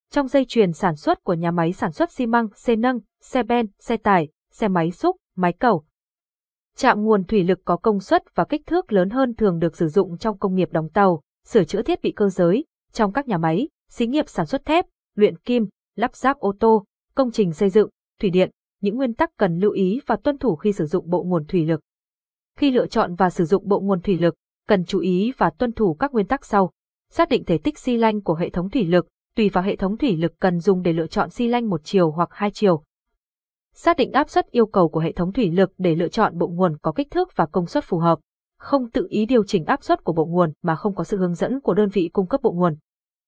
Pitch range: 180-240 Hz